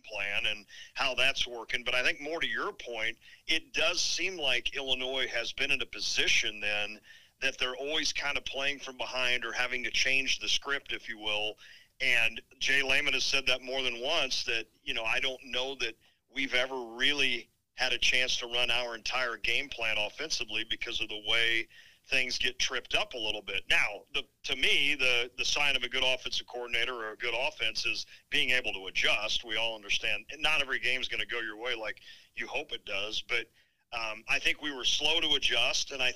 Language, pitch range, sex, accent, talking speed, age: English, 115-130 Hz, male, American, 215 wpm, 50-69